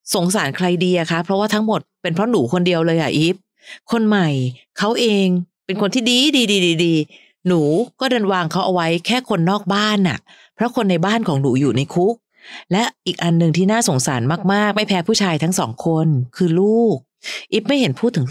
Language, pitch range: Thai, 160-210 Hz